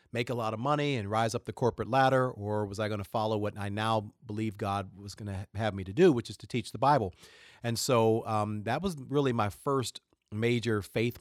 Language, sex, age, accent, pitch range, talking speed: English, male, 40-59, American, 105-125 Hz, 240 wpm